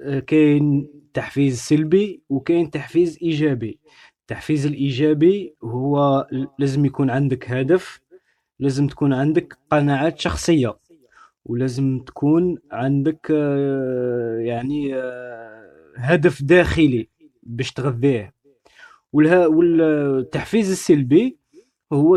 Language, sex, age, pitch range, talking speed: Arabic, male, 20-39, 135-180 Hz, 80 wpm